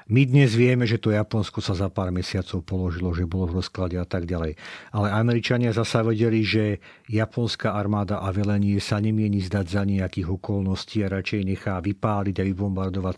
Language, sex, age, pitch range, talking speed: Slovak, male, 50-69, 100-115 Hz, 180 wpm